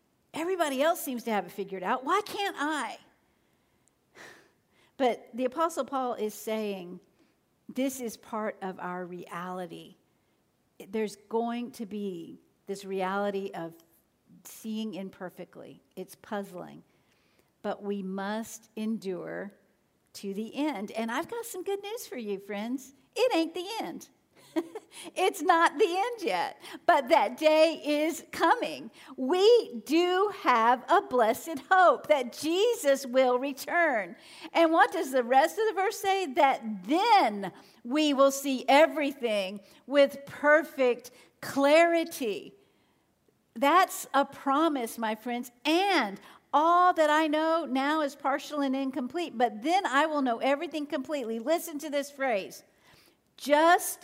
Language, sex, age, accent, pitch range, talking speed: English, female, 50-69, American, 220-330 Hz, 130 wpm